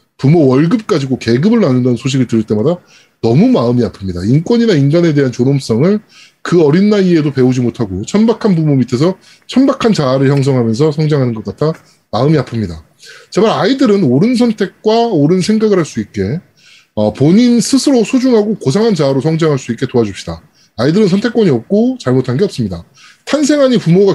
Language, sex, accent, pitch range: Korean, male, native, 125-210 Hz